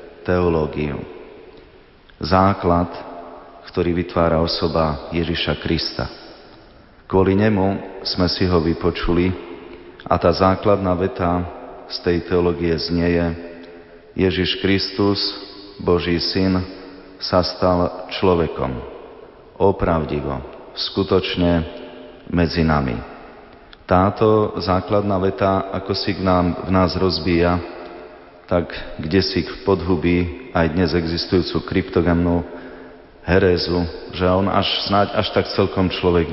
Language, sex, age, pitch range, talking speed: Slovak, male, 30-49, 85-95 Hz, 95 wpm